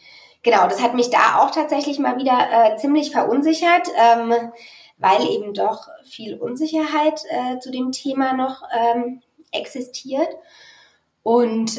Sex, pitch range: female, 185-245 Hz